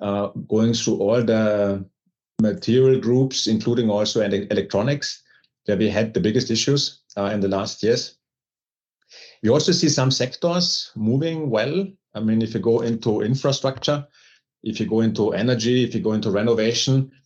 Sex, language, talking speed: male, English, 155 wpm